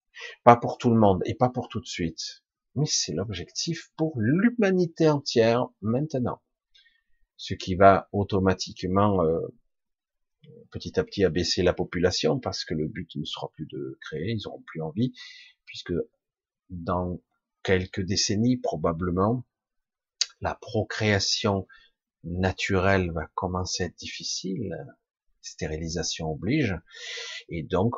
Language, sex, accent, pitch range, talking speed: French, male, French, 90-125 Hz, 125 wpm